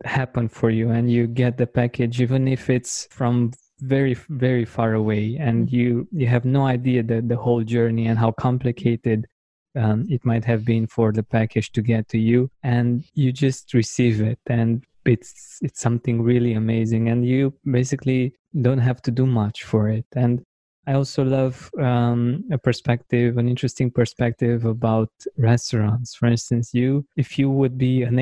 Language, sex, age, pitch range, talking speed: English, male, 20-39, 115-130 Hz, 175 wpm